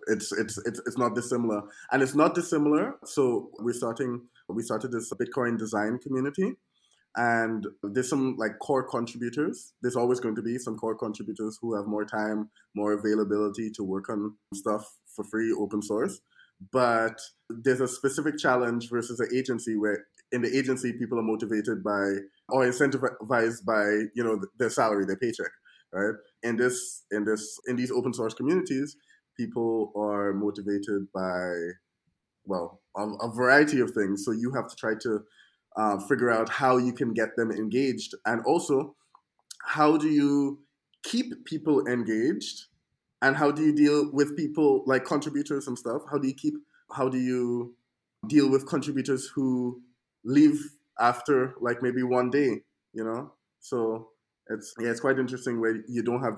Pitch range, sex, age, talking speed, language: 110-135 Hz, male, 20-39, 165 wpm, English